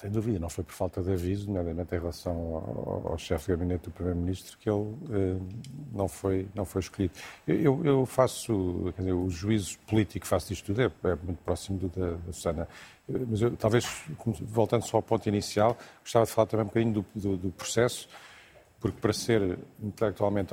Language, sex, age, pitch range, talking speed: Portuguese, male, 50-69, 95-115 Hz, 185 wpm